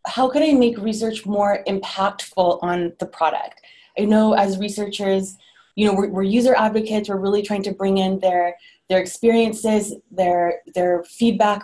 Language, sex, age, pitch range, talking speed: English, female, 20-39, 185-220 Hz, 165 wpm